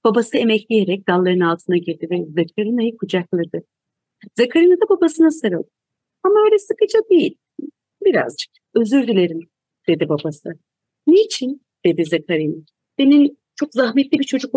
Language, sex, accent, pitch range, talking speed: Turkish, female, native, 185-295 Hz, 120 wpm